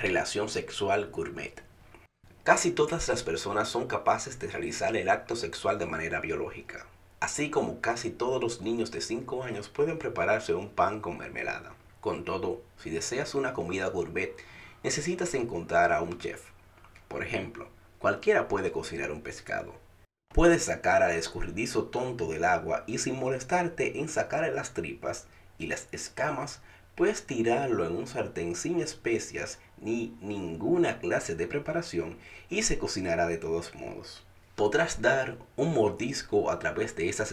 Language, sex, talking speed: Spanish, male, 150 wpm